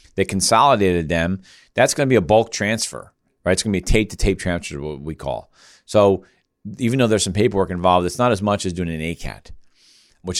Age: 40-59